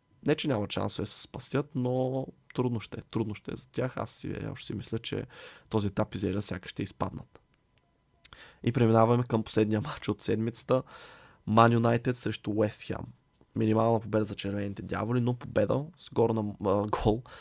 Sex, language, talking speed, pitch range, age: male, Bulgarian, 170 wpm, 105-125 Hz, 20-39